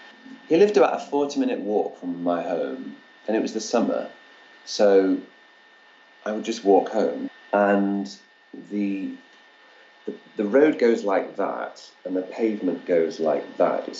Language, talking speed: English, 155 wpm